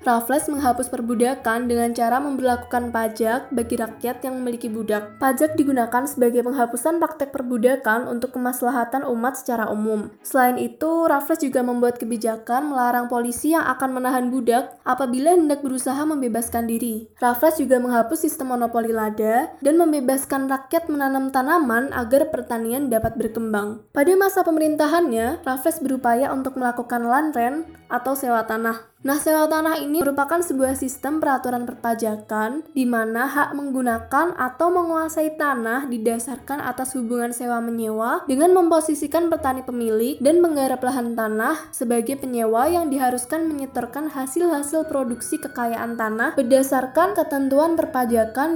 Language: Indonesian